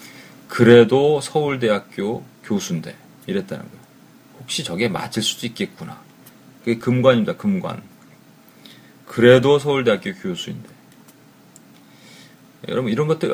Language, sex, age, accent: Korean, male, 40-59, native